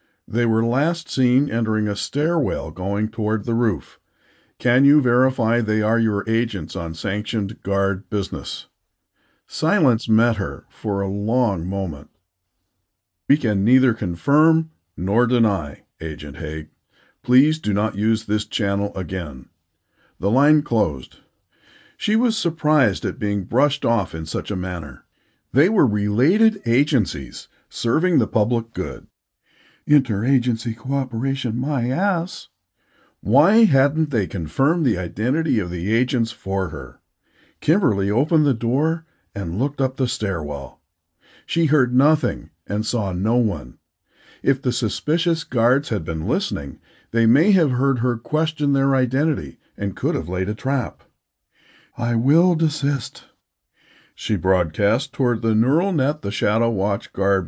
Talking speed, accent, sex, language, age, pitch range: 135 wpm, American, male, English, 50-69, 100-135 Hz